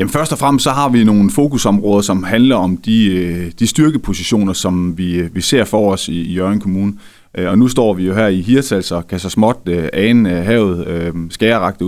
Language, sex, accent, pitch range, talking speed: Danish, male, native, 90-110 Hz, 200 wpm